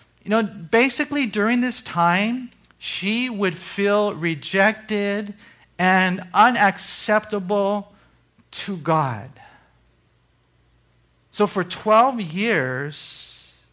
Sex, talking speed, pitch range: male, 80 wpm, 160-200 Hz